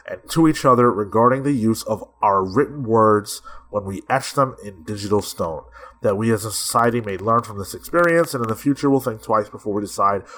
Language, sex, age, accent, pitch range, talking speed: English, male, 30-49, American, 105-140 Hz, 220 wpm